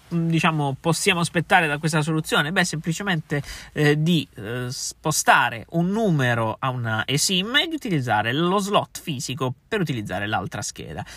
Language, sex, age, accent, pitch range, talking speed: Italian, male, 20-39, native, 125-160 Hz, 145 wpm